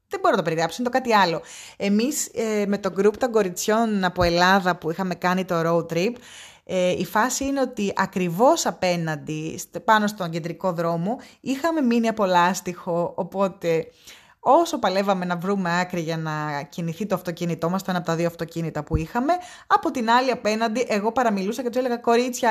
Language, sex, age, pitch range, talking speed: Greek, female, 20-39, 180-225 Hz, 180 wpm